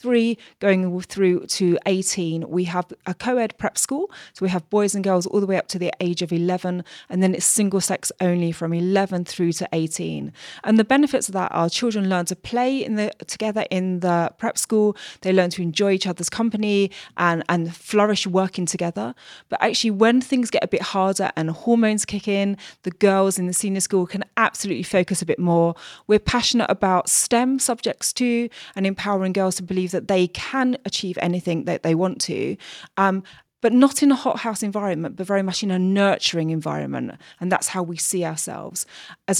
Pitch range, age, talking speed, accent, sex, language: 175-210 Hz, 30-49, 200 wpm, British, female, English